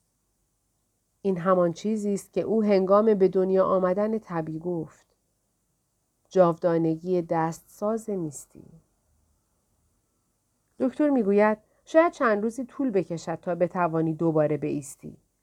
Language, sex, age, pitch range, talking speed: Persian, female, 40-59, 170-210 Hz, 105 wpm